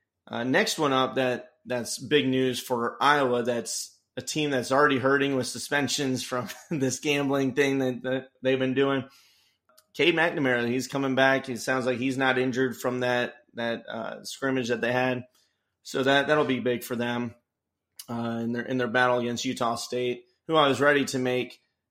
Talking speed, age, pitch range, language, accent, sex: 190 wpm, 30-49, 125-145 Hz, English, American, male